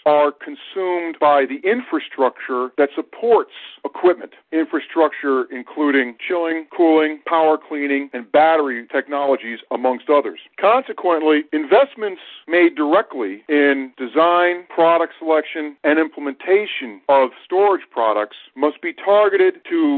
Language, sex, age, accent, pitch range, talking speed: English, male, 50-69, American, 145-215 Hz, 110 wpm